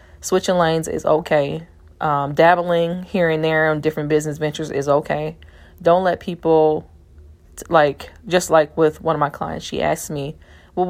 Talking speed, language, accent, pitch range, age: 170 wpm, English, American, 135-175 Hz, 20-39